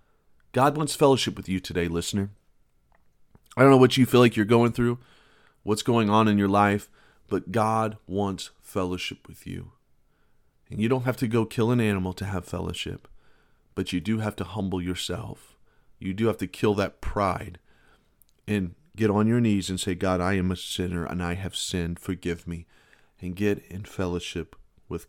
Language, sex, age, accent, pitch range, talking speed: English, male, 40-59, American, 95-110 Hz, 185 wpm